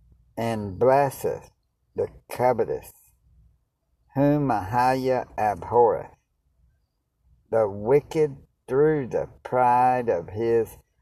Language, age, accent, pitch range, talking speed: English, 60-79, American, 80-130 Hz, 75 wpm